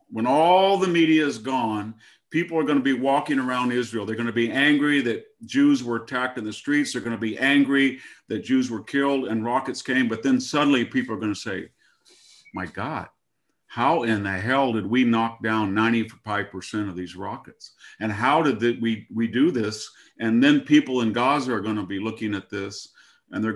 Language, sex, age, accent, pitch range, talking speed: Hebrew, male, 50-69, American, 110-145 Hz, 210 wpm